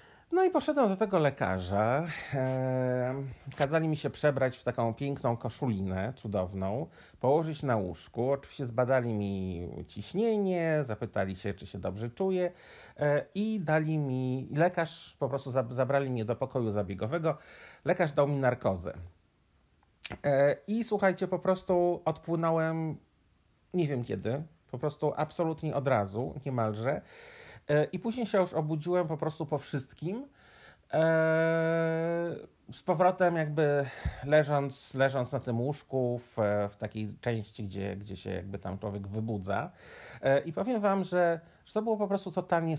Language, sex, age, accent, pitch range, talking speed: Polish, male, 40-59, native, 115-165 Hz, 140 wpm